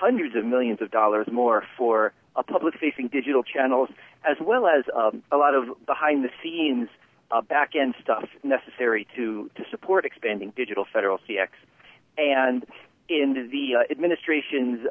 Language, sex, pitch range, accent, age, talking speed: English, male, 120-150 Hz, American, 40-59, 140 wpm